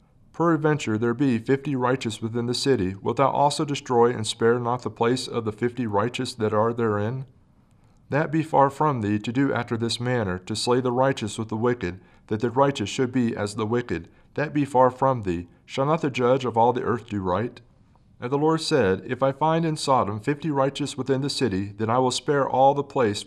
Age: 40-59